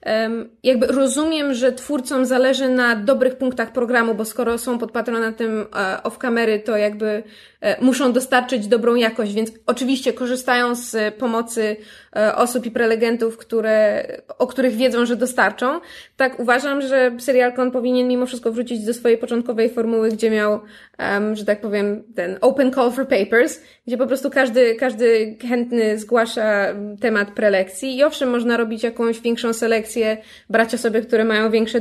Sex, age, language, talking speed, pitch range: female, 20-39, Polish, 150 wpm, 215-260 Hz